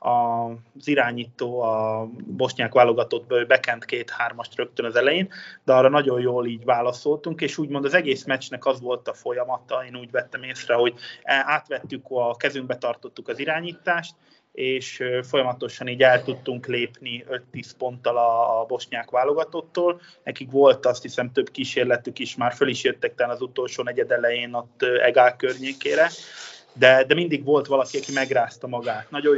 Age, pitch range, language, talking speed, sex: 20-39, 125-155 Hz, Hungarian, 155 wpm, male